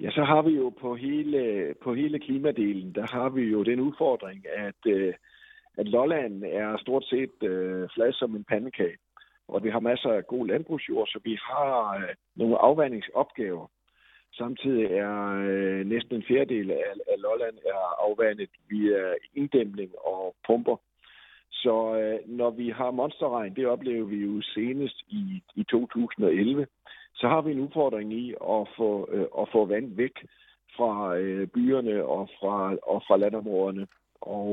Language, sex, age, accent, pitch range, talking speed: Danish, male, 50-69, native, 100-135 Hz, 150 wpm